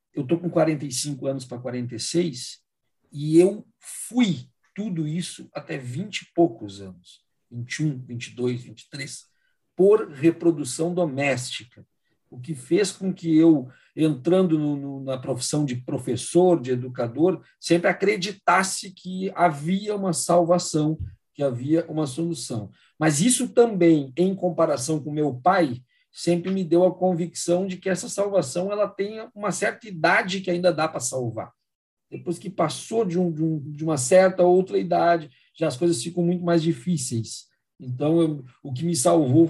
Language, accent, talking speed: Portuguese, Brazilian, 150 wpm